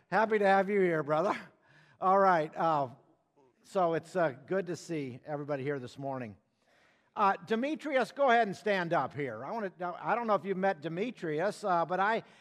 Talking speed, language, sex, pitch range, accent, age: 190 wpm, English, male, 175-220 Hz, American, 50-69